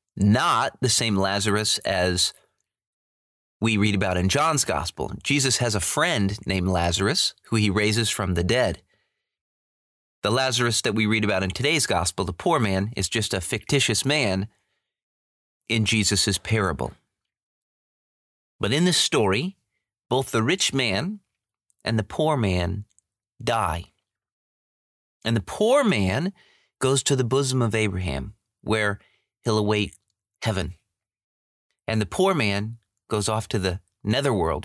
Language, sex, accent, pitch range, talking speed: English, male, American, 95-120 Hz, 135 wpm